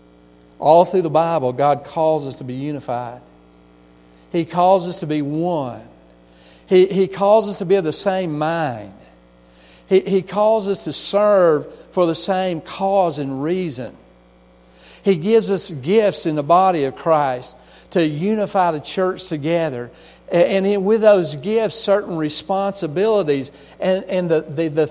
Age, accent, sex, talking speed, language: 50-69, American, male, 155 wpm, English